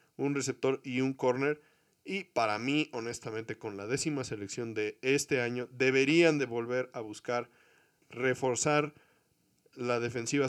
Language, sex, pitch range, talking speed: Spanish, male, 120-150 Hz, 135 wpm